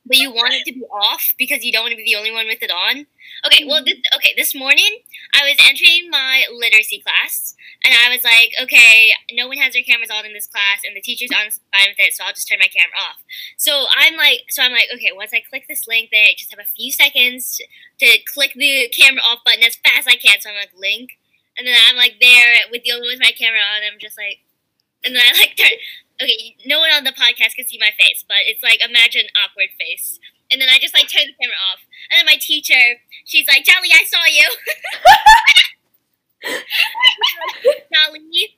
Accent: American